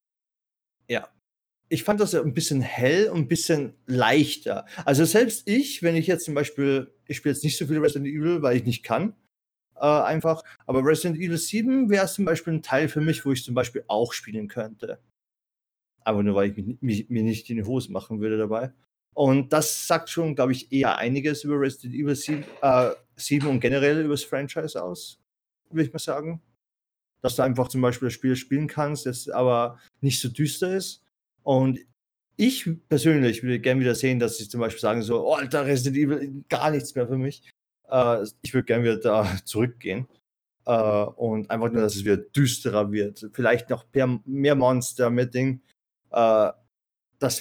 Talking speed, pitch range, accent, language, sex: 185 wpm, 115-150 Hz, German, German, male